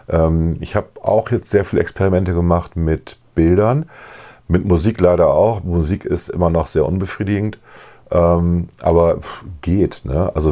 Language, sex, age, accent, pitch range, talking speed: German, male, 40-59, German, 70-85 Hz, 135 wpm